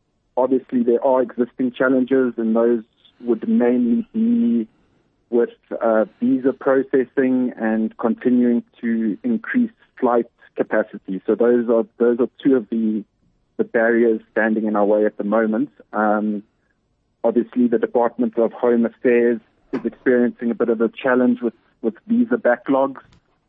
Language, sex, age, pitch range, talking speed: English, male, 30-49, 110-125 Hz, 140 wpm